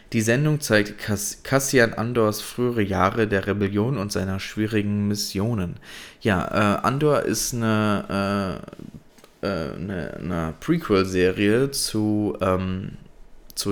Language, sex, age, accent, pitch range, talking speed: German, male, 20-39, German, 100-115 Hz, 120 wpm